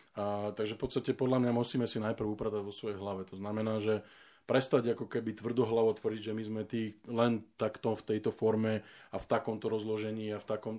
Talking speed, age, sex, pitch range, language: 200 wpm, 20-39, male, 105-125 Hz, Slovak